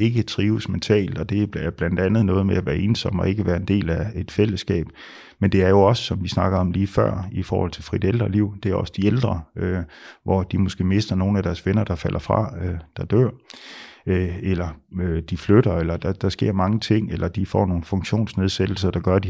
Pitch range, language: 90-105 Hz, Danish